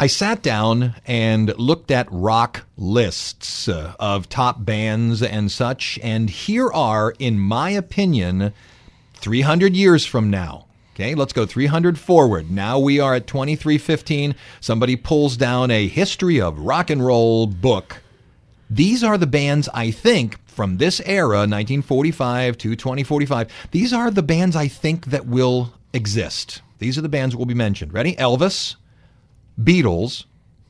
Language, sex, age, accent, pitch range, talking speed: English, male, 40-59, American, 110-145 Hz, 145 wpm